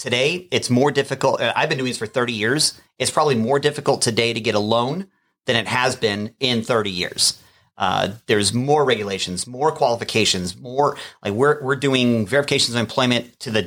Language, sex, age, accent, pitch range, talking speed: English, male, 30-49, American, 110-130 Hz, 190 wpm